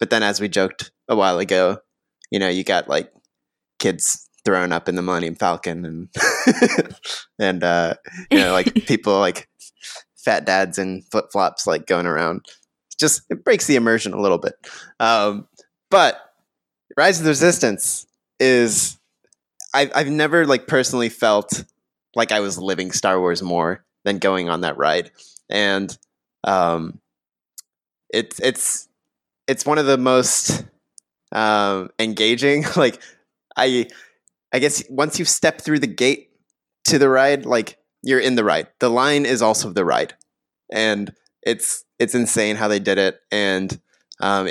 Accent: American